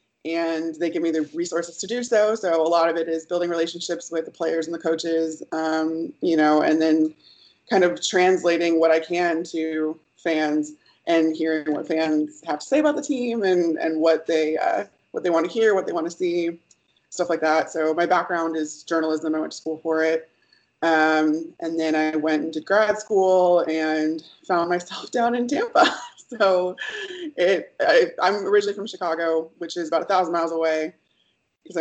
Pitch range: 160-180 Hz